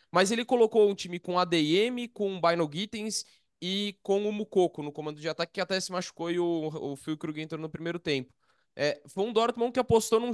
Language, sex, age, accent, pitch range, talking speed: Portuguese, male, 20-39, Brazilian, 155-200 Hz, 220 wpm